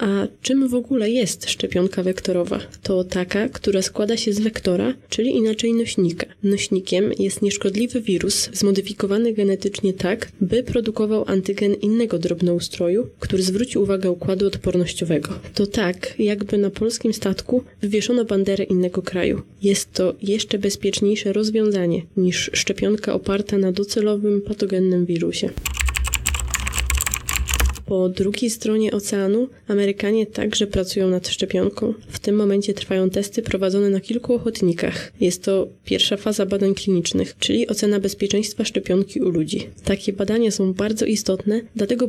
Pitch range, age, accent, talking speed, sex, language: 190-220 Hz, 20-39, native, 130 wpm, female, Polish